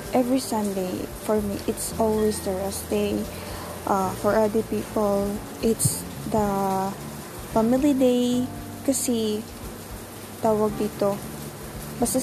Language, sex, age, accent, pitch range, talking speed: Filipino, female, 20-39, native, 200-245 Hz, 105 wpm